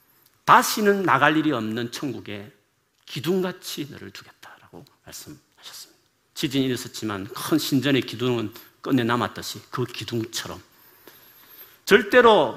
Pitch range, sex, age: 110-140 Hz, male, 40-59